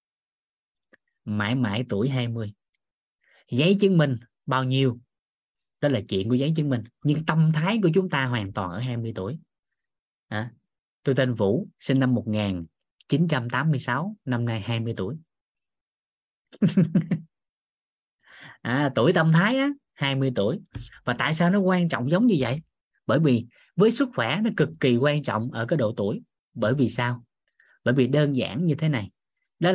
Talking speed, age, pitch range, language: 160 wpm, 20-39, 115-160 Hz, Vietnamese